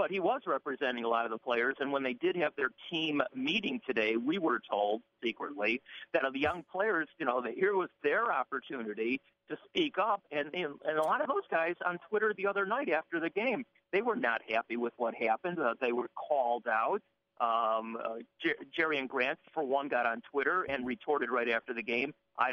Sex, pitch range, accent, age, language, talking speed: male, 120-170 Hz, American, 50-69, English, 220 wpm